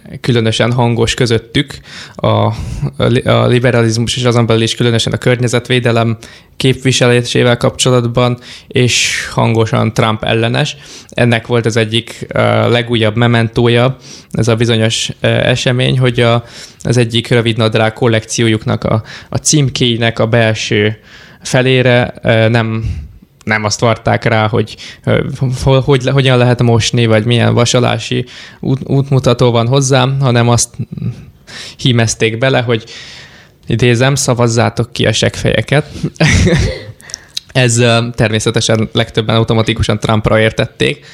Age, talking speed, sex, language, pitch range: 20-39, 110 wpm, male, Hungarian, 115-125 Hz